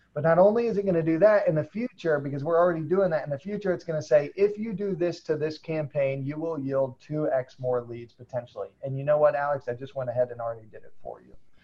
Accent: American